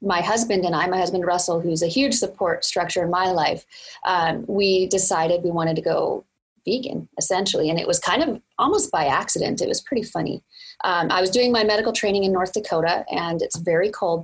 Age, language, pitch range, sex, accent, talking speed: 30-49, English, 185-245 Hz, female, American, 210 wpm